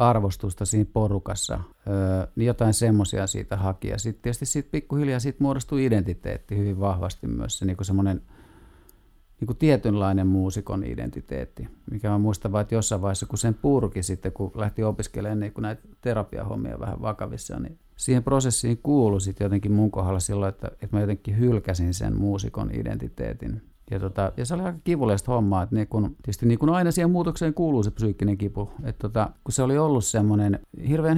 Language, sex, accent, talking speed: Finnish, male, native, 175 wpm